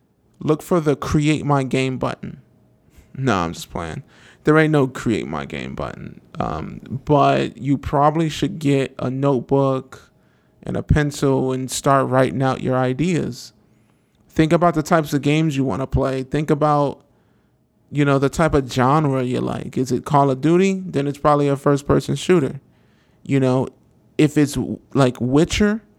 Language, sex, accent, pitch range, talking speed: English, male, American, 130-150 Hz, 170 wpm